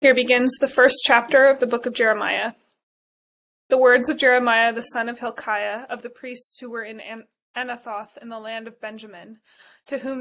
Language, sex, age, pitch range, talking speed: English, female, 20-39, 220-250 Hz, 190 wpm